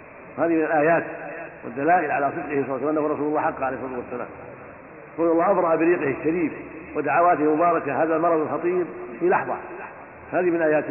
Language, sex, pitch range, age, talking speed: Arabic, male, 155-180 Hz, 50-69, 165 wpm